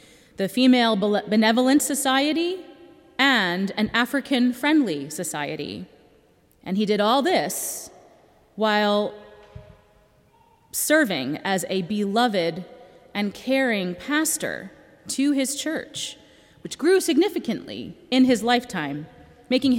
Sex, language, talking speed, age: female, English, 95 wpm, 30-49